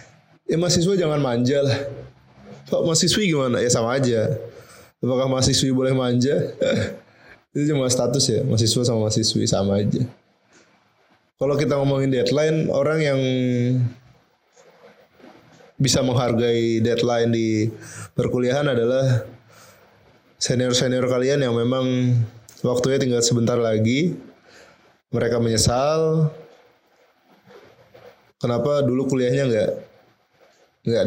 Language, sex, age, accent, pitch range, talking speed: Indonesian, male, 20-39, native, 115-140 Hz, 100 wpm